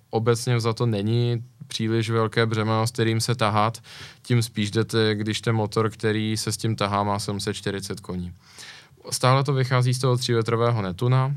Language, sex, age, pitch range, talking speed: Czech, male, 20-39, 100-115 Hz, 170 wpm